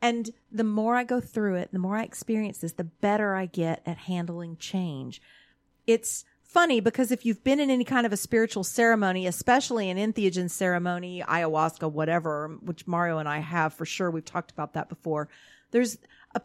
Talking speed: 190 wpm